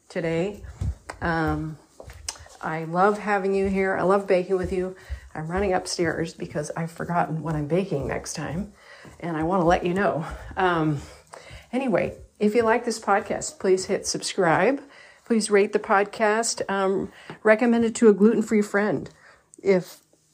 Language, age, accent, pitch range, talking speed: English, 40-59, American, 165-210 Hz, 155 wpm